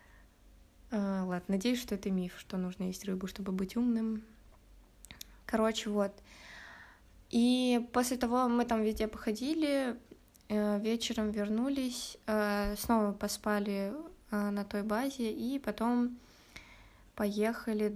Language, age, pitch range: Russian, 20-39, 205-235 Hz